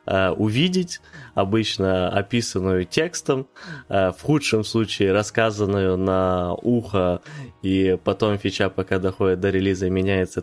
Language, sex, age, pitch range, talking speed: Ukrainian, male, 20-39, 95-110 Hz, 105 wpm